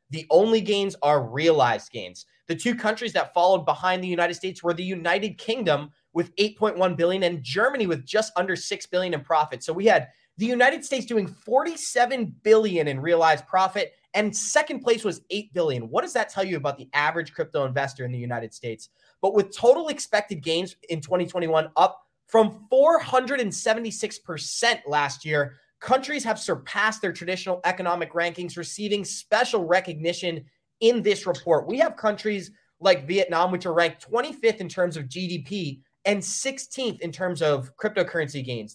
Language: English